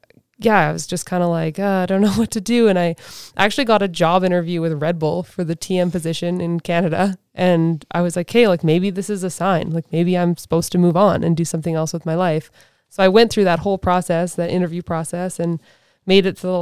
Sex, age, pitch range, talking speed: female, 20-39, 165-195 Hz, 250 wpm